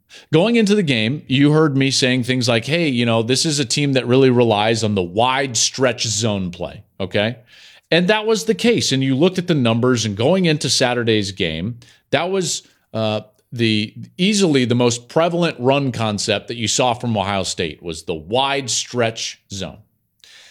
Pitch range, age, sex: 110-145 Hz, 40-59, male